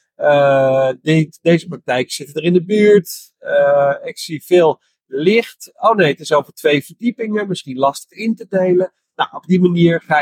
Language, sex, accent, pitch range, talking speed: Dutch, male, Dutch, 145-195 Hz, 180 wpm